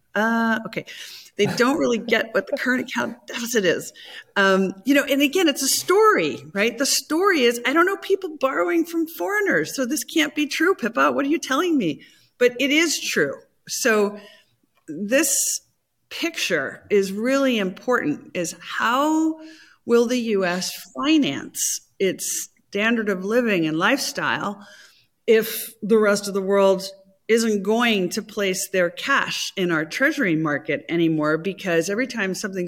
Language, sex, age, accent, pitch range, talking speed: English, female, 50-69, American, 195-275 Hz, 155 wpm